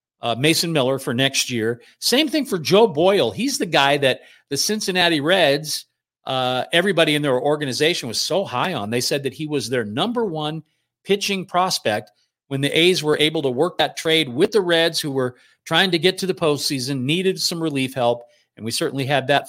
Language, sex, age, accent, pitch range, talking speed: English, male, 50-69, American, 130-185 Hz, 205 wpm